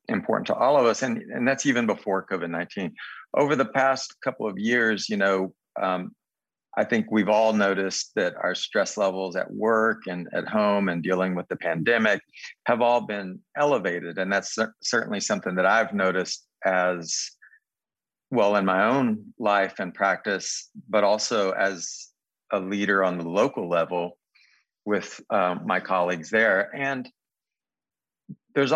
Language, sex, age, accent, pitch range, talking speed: English, male, 50-69, American, 95-110 Hz, 160 wpm